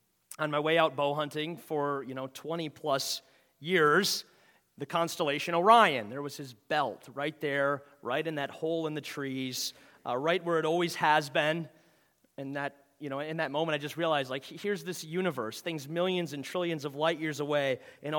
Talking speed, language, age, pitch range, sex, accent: 190 wpm, English, 30-49, 130-165 Hz, male, American